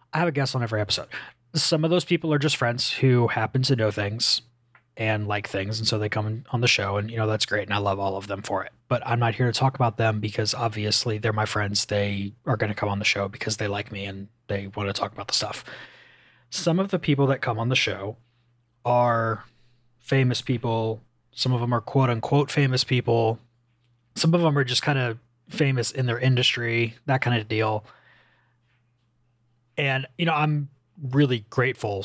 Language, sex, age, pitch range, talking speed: English, male, 20-39, 110-125 Hz, 215 wpm